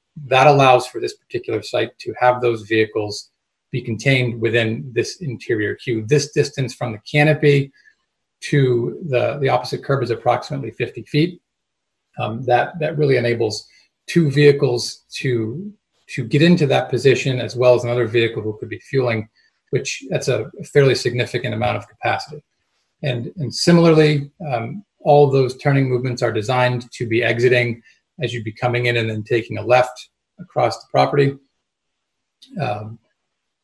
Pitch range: 120-145 Hz